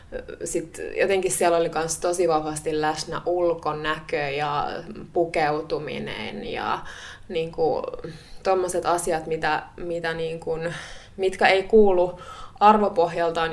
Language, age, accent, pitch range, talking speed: Finnish, 20-39, native, 165-185 Hz, 100 wpm